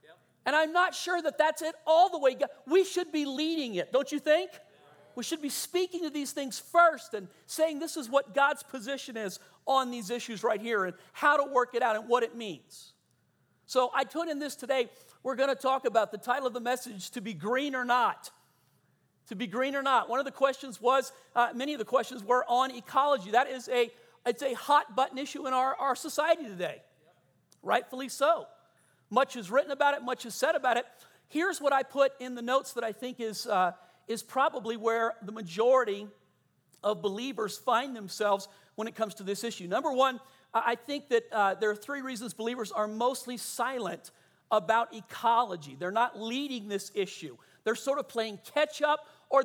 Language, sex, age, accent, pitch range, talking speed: English, male, 40-59, American, 225-280 Hz, 200 wpm